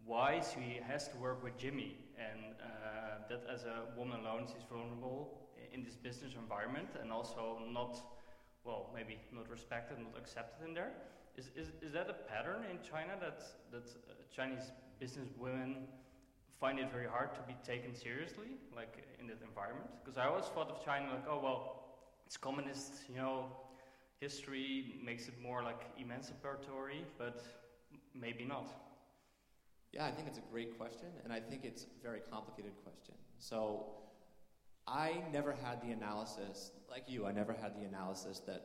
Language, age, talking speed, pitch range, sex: English, 20-39, 165 wpm, 110-130 Hz, male